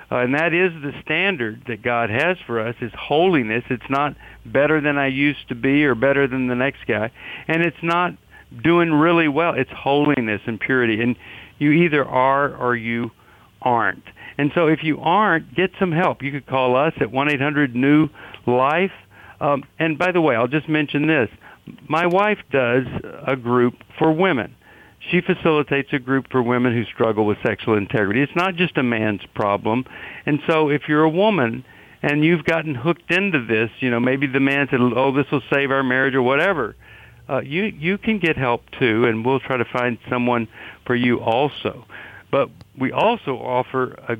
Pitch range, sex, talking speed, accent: 120-155 Hz, male, 185 wpm, American